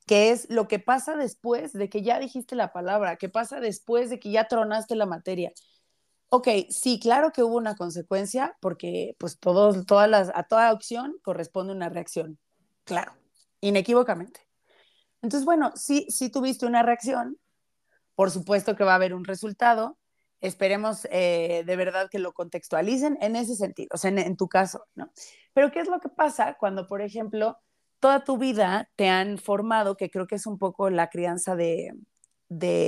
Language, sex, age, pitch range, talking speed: Spanish, female, 30-49, 185-240 Hz, 180 wpm